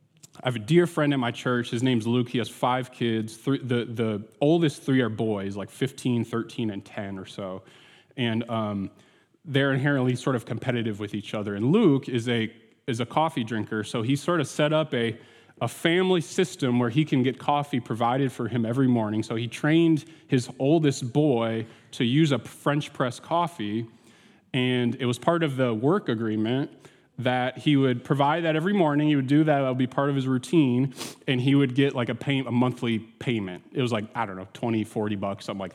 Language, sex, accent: English, male, American